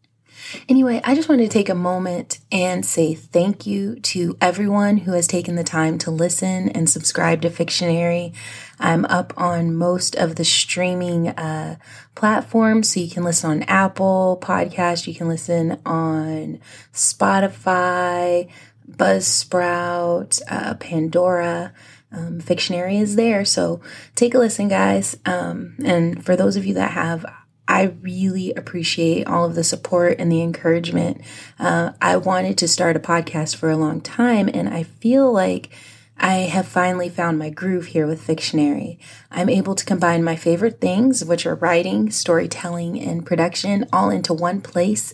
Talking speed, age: 155 wpm, 20-39